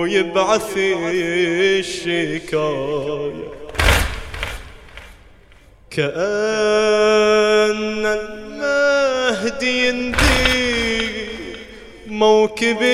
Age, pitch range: 30-49, 155-215 Hz